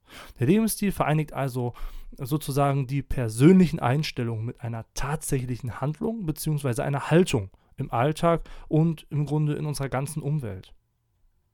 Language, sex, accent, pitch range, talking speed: German, male, German, 125-155 Hz, 125 wpm